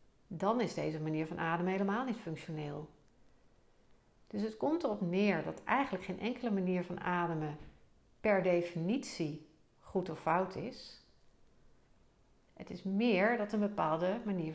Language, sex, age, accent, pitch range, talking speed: Dutch, female, 60-79, Dutch, 155-210 Hz, 140 wpm